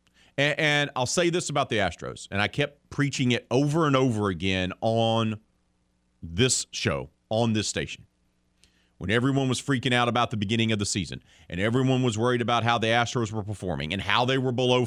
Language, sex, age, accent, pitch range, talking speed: English, male, 40-59, American, 75-130 Hz, 195 wpm